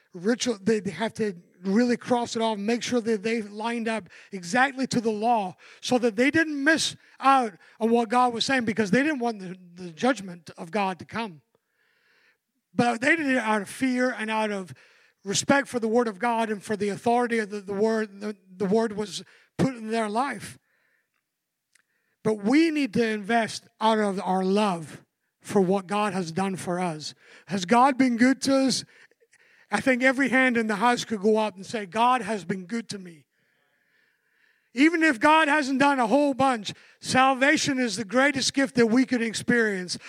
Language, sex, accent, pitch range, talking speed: English, male, American, 210-265 Hz, 195 wpm